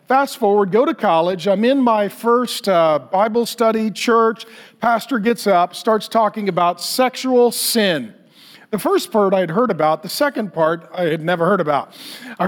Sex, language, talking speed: male, English, 180 wpm